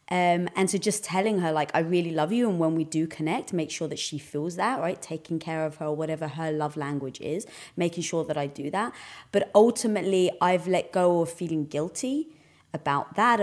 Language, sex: English, female